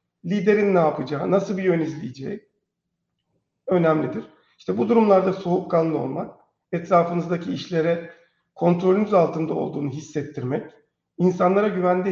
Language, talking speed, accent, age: Turkish, 105 wpm, native, 50-69